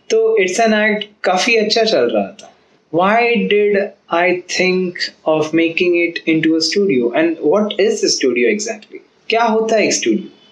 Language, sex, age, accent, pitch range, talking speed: Hindi, male, 20-39, native, 150-210 Hz, 155 wpm